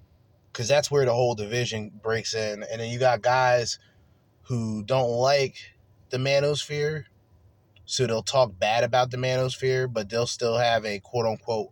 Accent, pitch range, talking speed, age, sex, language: American, 100-130 Hz, 160 wpm, 20-39, male, English